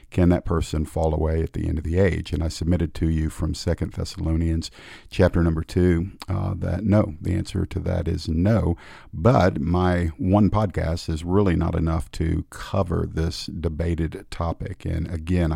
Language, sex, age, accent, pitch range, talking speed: English, male, 50-69, American, 80-90 Hz, 175 wpm